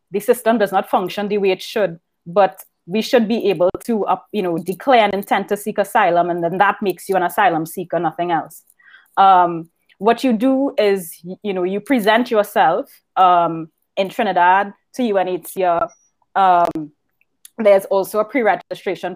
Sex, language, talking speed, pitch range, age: female, English, 175 wpm, 175-200 Hz, 20-39